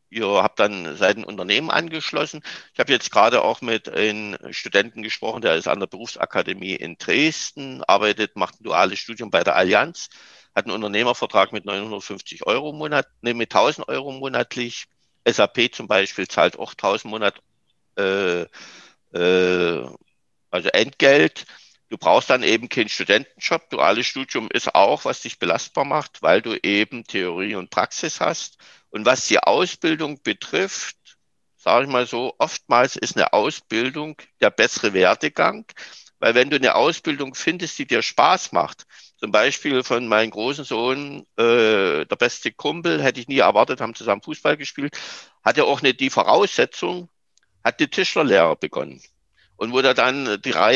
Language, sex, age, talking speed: German, male, 50-69, 160 wpm